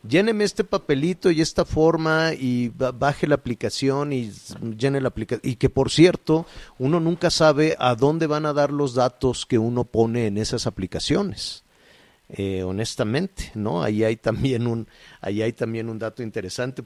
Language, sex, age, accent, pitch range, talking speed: Spanish, male, 50-69, Mexican, 115-150 Hz, 165 wpm